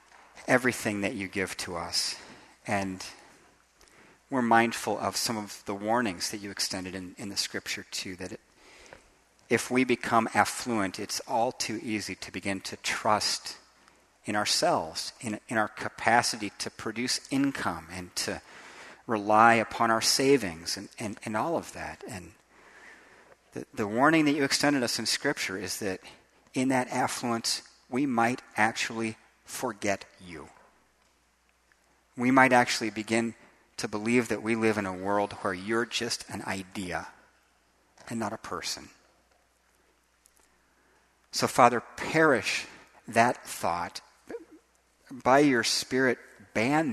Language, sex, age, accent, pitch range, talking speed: English, male, 40-59, American, 100-125 Hz, 135 wpm